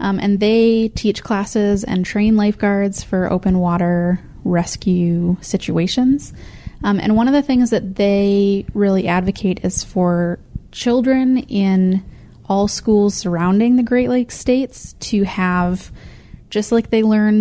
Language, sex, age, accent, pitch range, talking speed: English, female, 20-39, American, 185-225 Hz, 140 wpm